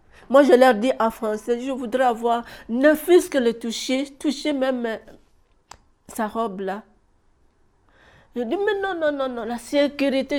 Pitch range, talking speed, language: 180-225 Hz, 160 wpm, French